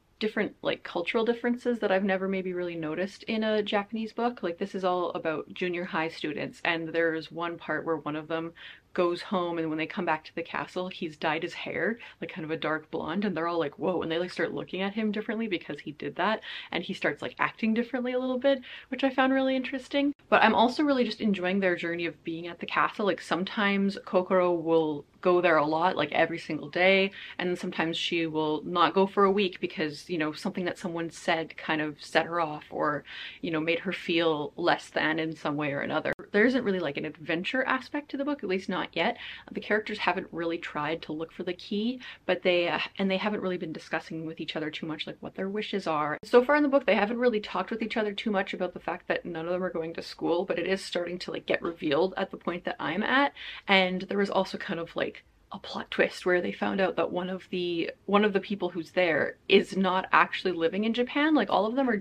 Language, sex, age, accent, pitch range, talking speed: English, female, 30-49, American, 165-210 Hz, 250 wpm